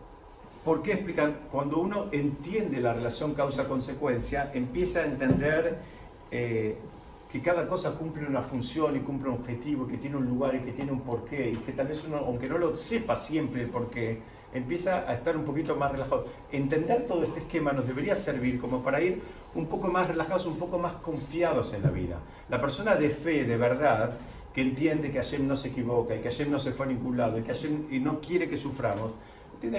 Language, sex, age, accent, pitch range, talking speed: Spanish, male, 50-69, Argentinian, 120-165 Hz, 205 wpm